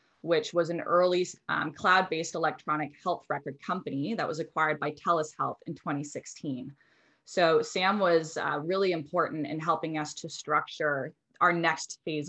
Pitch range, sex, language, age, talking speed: 150-180 Hz, female, English, 20-39, 155 wpm